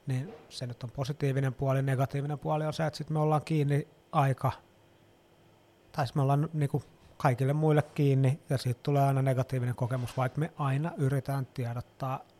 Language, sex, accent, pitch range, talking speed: Finnish, male, native, 130-145 Hz, 160 wpm